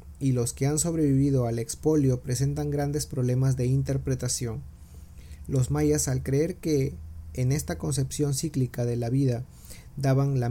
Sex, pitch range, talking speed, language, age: male, 120-145 Hz, 150 wpm, Spanish, 40-59